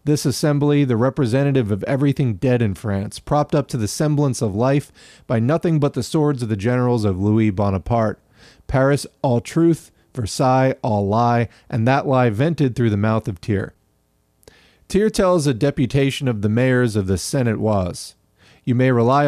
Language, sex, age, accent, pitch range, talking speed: English, male, 40-59, American, 110-145 Hz, 175 wpm